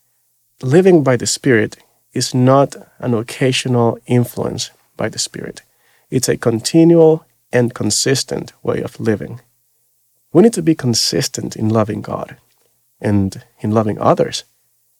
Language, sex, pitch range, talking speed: English, male, 110-125 Hz, 130 wpm